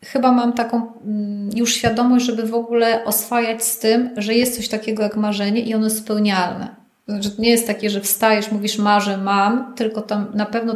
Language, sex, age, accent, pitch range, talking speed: Polish, female, 30-49, native, 215-245 Hz, 185 wpm